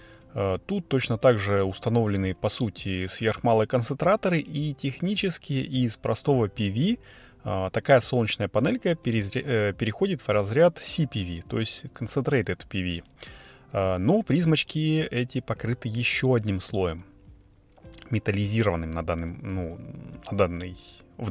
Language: Russian